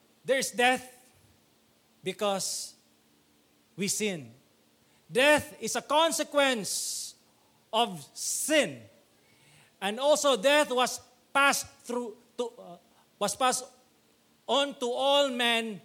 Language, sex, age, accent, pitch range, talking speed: English, male, 40-59, Filipino, 165-255 Hz, 100 wpm